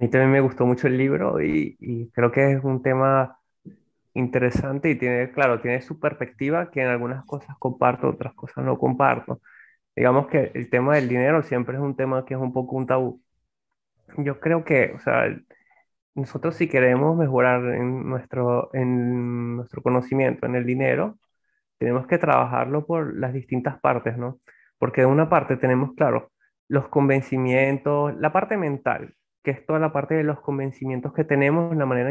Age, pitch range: 20-39, 125-145 Hz